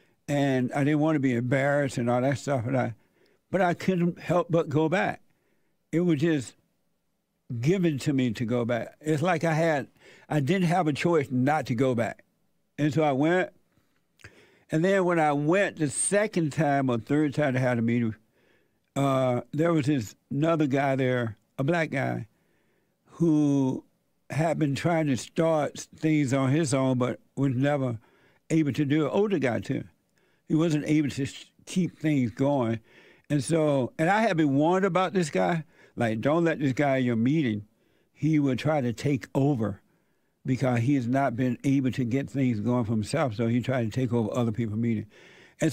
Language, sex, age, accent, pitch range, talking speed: English, male, 60-79, American, 130-160 Hz, 190 wpm